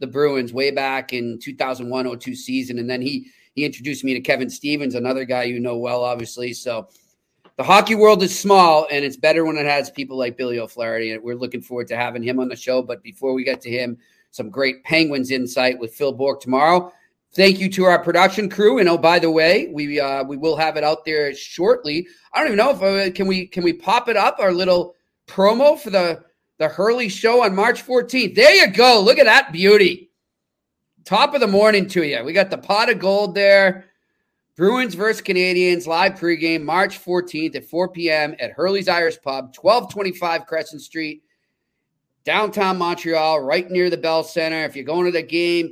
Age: 30-49